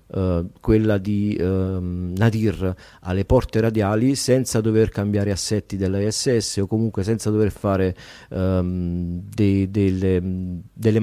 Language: Italian